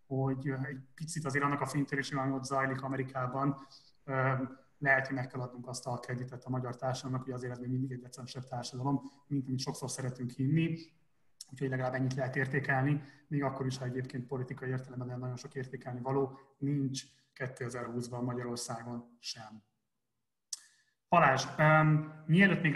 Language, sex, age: Hungarian, male, 30-49